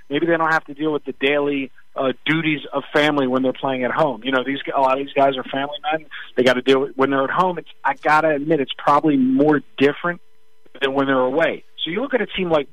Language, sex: English, male